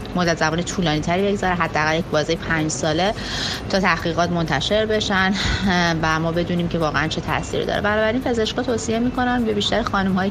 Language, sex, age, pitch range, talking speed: Persian, female, 30-49, 155-190 Hz, 180 wpm